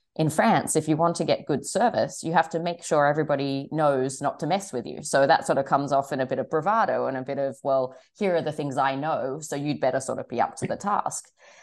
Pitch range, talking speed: 135-165 Hz, 275 wpm